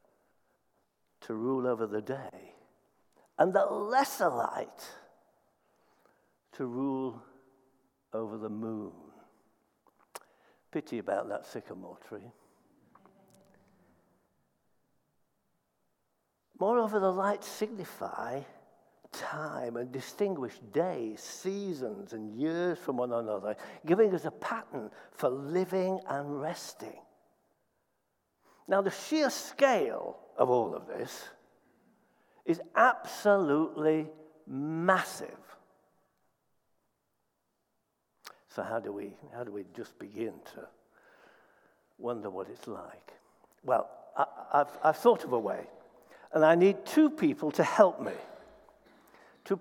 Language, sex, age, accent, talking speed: English, male, 60-79, British, 100 wpm